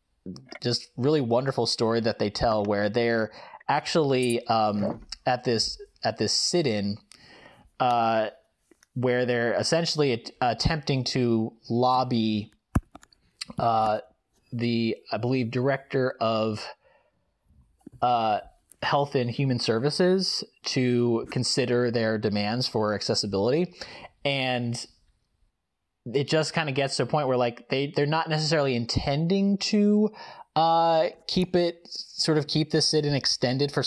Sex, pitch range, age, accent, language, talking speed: male, 110-145 Hz, 30-49, American, English, 115 wpm